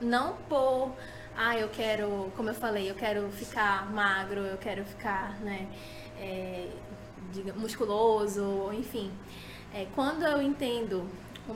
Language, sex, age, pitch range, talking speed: Portuguese, female, 10-29, 205-260 Hz, 130 wpm